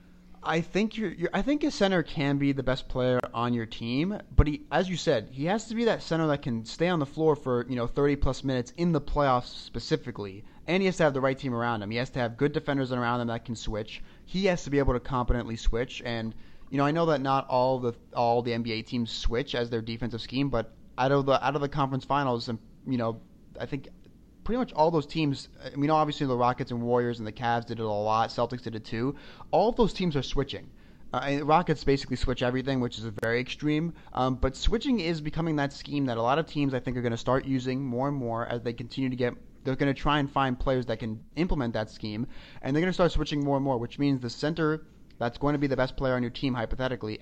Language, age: English, 30-49